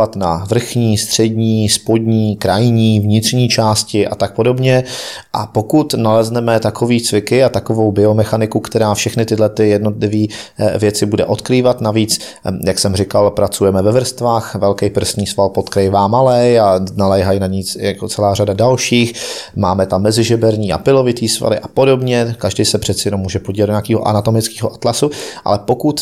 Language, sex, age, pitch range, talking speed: Czech, male, 30-49, 105-120 Hz, 150 wpm